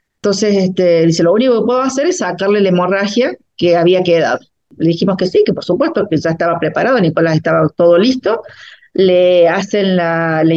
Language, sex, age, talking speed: Spanish, female, 40-59, 185 wpm